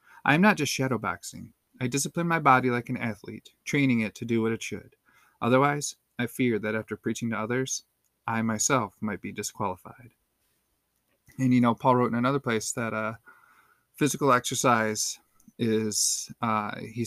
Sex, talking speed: male, 165 wpm